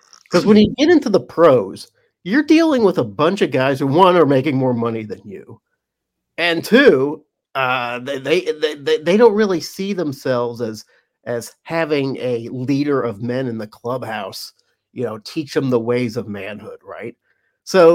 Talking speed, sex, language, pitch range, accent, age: 175 wpm, male, English, 120-155 Hz, American, 40-59